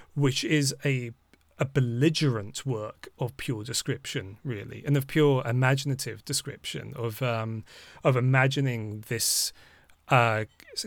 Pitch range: 115-140 Hz